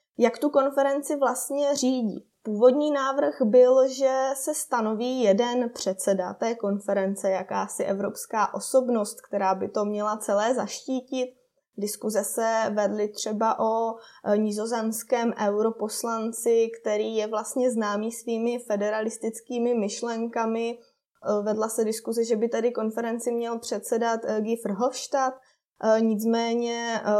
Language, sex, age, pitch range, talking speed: Czech, female, 20-39, 210-250 Hz, 110 wpm